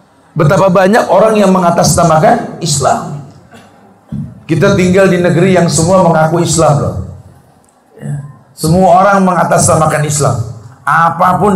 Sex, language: male, Indonesian